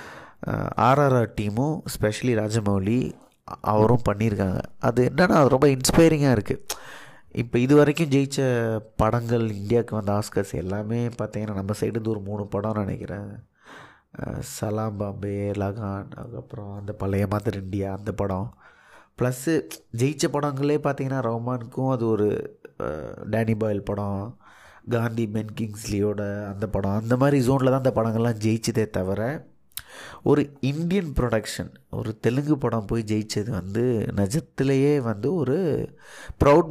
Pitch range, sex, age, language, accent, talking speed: 105-130 Hz, male, 30-49, Tamil, native, 125 wpm